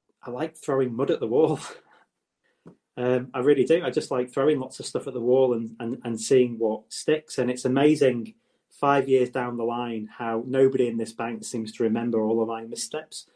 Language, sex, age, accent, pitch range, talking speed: English, male, 30-49, British, 115-145 Hz, 210 wpm